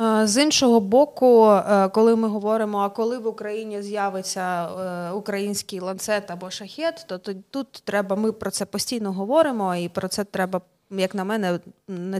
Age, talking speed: 20-39, 155 wpm